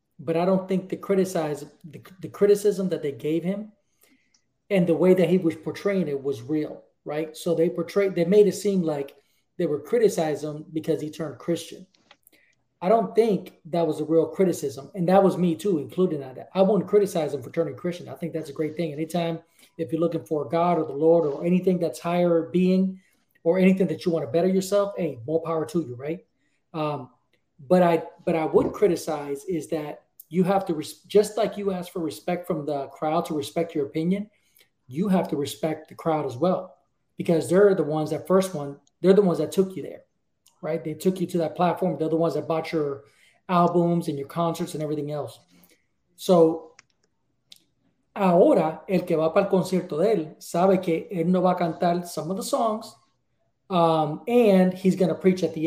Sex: male